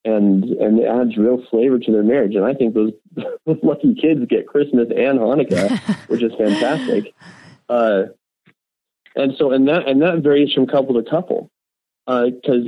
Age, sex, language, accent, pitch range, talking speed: 30-49, male, English, American, 105-130 Hz, 170 wpm